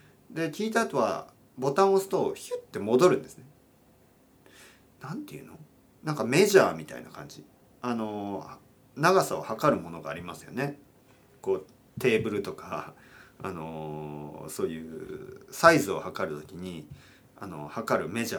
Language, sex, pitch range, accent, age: Japanese, male, 95-165 Hz, native, 40-59